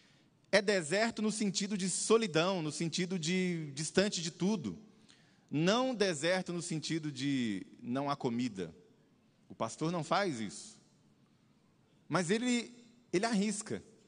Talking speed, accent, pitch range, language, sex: 125 wpm, Brazilian, 150-210 Hz, Portuguese, male